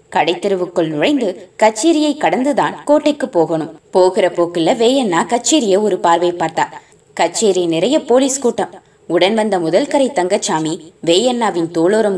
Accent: native